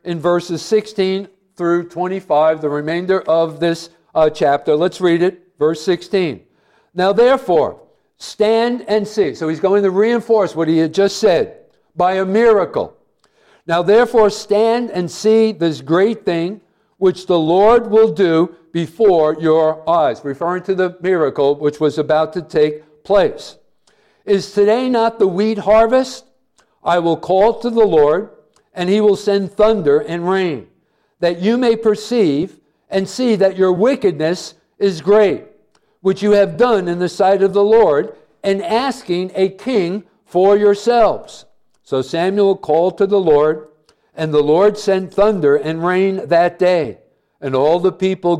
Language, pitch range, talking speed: English, 170-210 Hz, 155 wpm